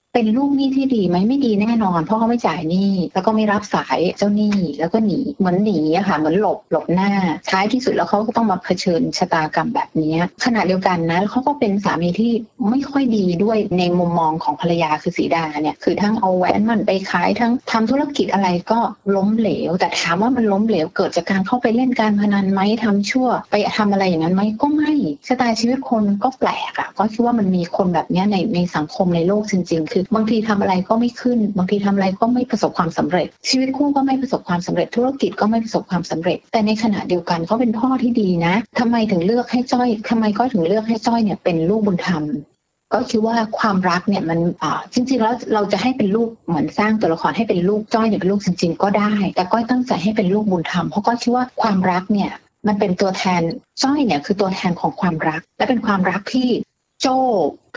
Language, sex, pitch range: Thai, female, 180-230 Hz